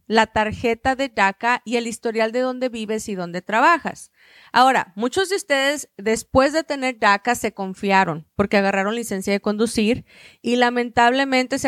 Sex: female